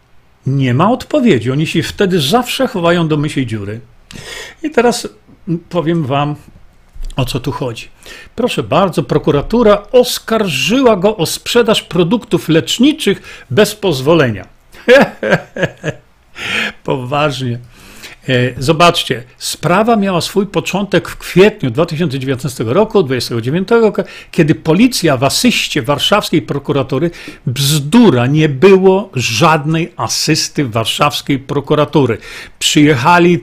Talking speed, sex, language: 100 wpm, male, Polish